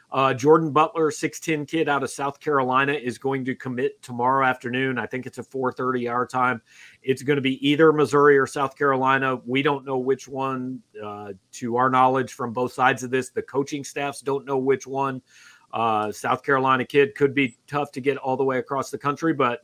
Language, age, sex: English, 40-59, male